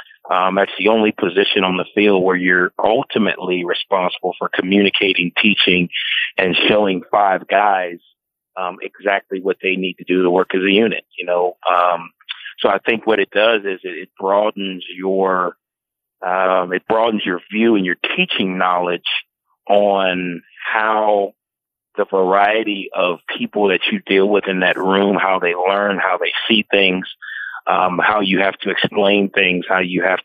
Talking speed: 165 wpm